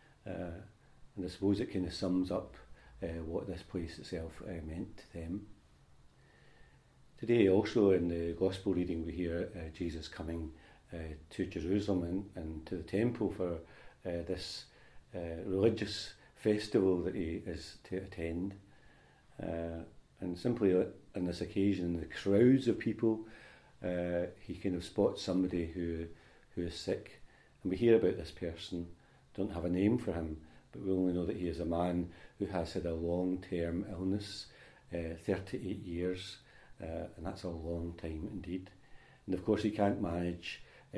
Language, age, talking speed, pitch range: English, 40-59, 165 wpm, 85-100 Hz